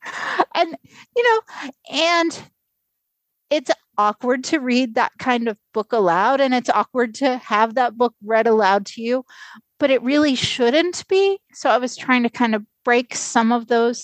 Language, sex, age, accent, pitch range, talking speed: English, female, 30-49, American, 185-250 Hz, 170 wpm